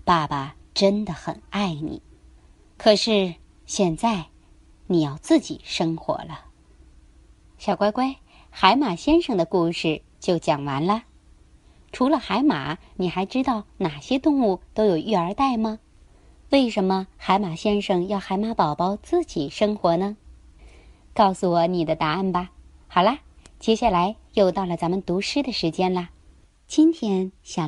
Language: Chinese